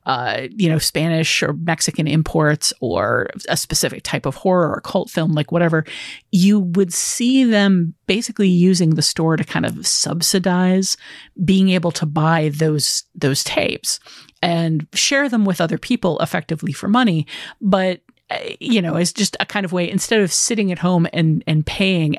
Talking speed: 170 wpm